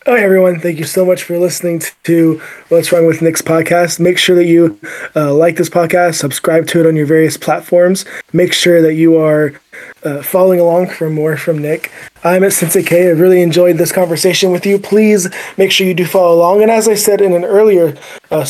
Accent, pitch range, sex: American, 160-185 Hz, male